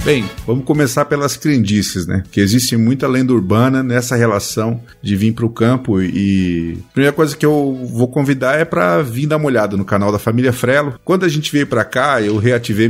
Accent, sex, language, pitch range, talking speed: Brazilian, male, Portuguese, 105-140 Hz, 210 wpm